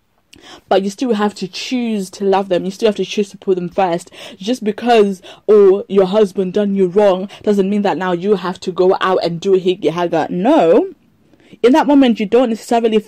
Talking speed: 210 wpm